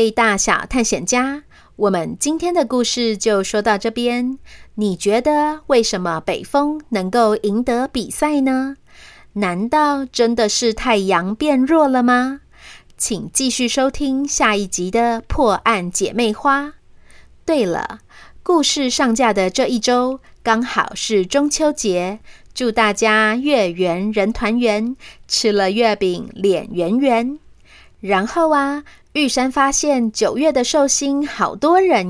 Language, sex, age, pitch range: Chinese, female, 30-49, 205-270 Hz